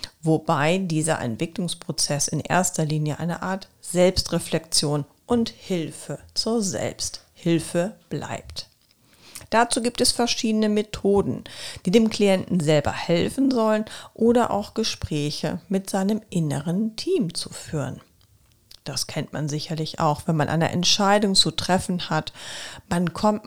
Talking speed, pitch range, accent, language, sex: 125 wpm, 155-200 Hz, German, German, female